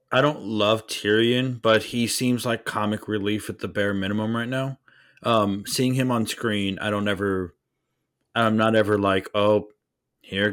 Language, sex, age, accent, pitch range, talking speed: English, male, 30-49, American, 100-125 Hz, 170 wpm